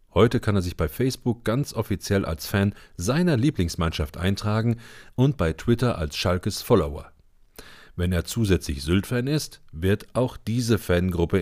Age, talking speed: 40-59, 145 wpm